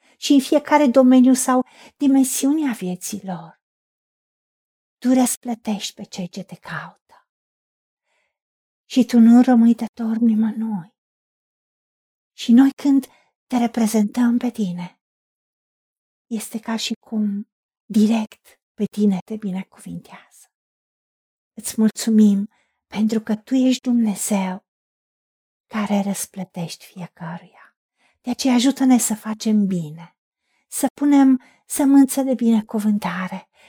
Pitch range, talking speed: 200-255 Hz, 105 wpm